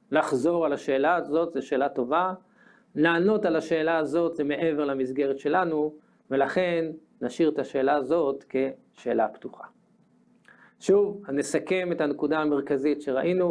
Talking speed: 130 wpm